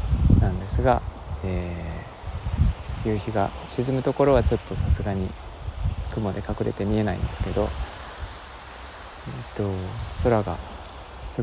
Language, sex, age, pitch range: Japanese, male, 20-39, 80-105 Hz